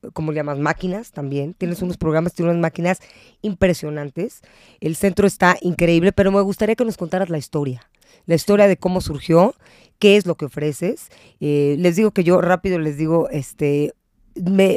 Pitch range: 160-200 Hz